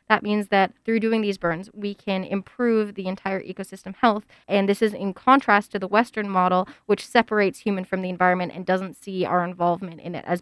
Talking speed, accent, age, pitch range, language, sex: 215 wpm, American, 20-39, 190-230 Hz, English, female